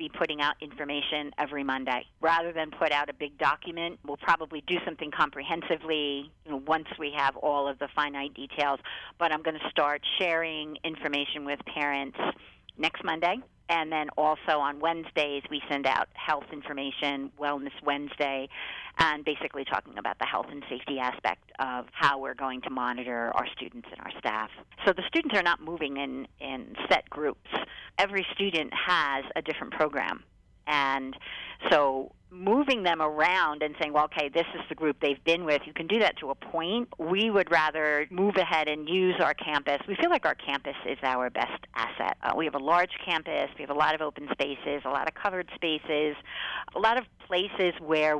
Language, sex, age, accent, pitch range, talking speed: English, female, 50-69, American, 140-165 Hz, 185 wpm